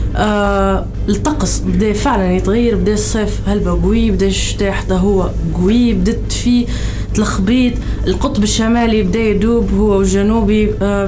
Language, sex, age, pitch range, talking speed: Arabic, female, 20-39, 155-220 Hz, 130 wpm